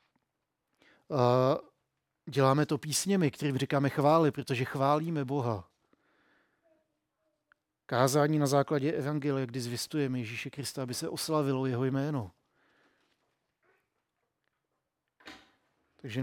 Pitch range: 135-155 Hz